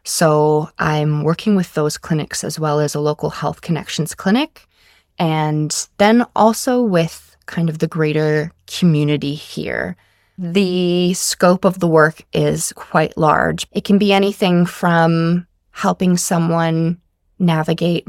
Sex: female